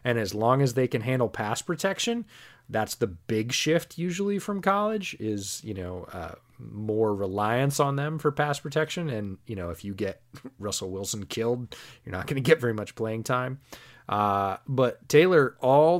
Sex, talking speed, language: male, 185 wpm, English